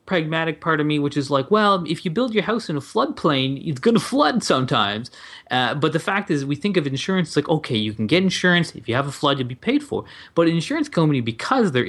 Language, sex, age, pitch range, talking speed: English, male, 20-39, 115-150 Hz, 260 wpm